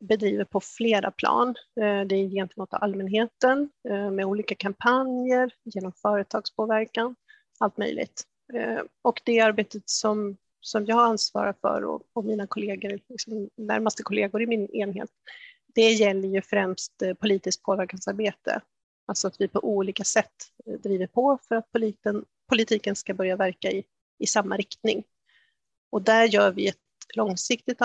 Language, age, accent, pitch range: Swedish, 30-49, native, 200-235 Hz